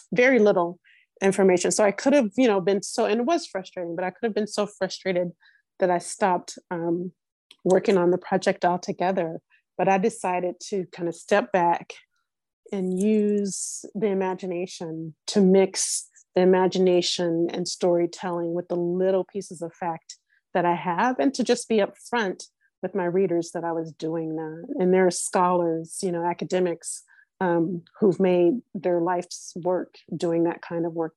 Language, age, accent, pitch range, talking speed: English, 30-49, American, 170-195 Hz, 170 wpm